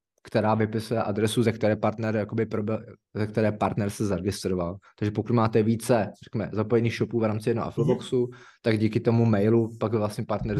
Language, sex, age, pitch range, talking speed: Czech, male, 20-39, 105-115 Hz, 175 wpm